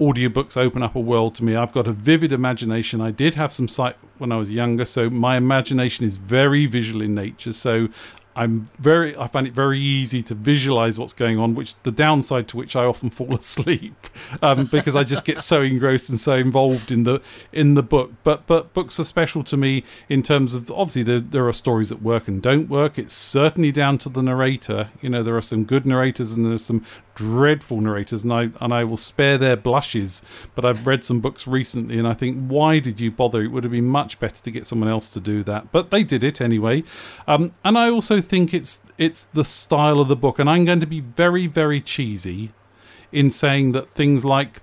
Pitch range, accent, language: 115-145 Hz, British, English